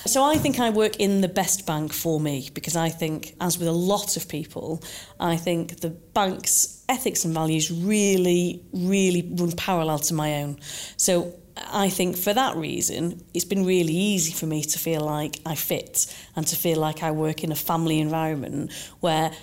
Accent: British